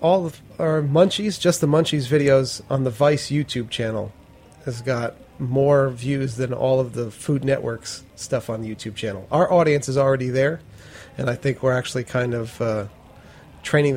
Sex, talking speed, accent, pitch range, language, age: male, 180 wpm, American, 120-140 Hz, English, 30-49